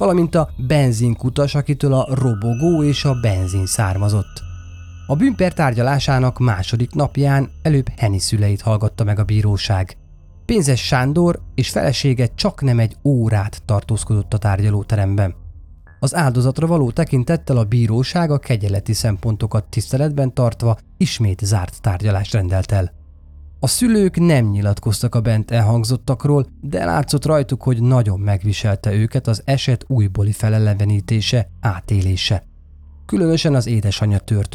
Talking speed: 120 wpm